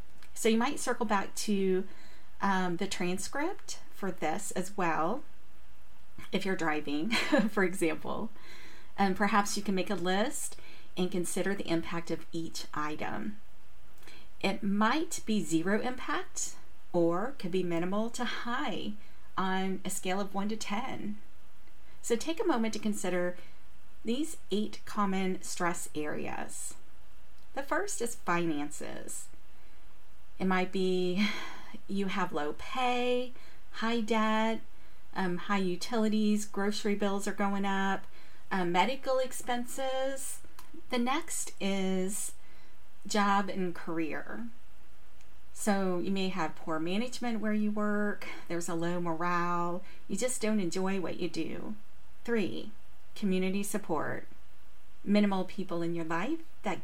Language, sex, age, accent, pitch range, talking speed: English, female, 40-59, American, 175-220 Hz, 125 wpm